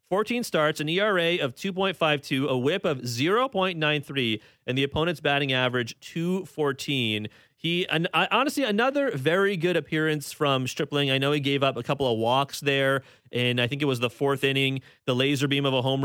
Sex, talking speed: male, 190 wpm